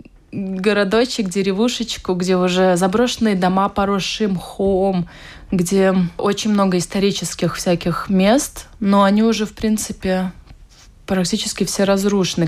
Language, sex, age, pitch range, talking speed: Russian, female, 20-39, 180-210 Hz, 105 wpm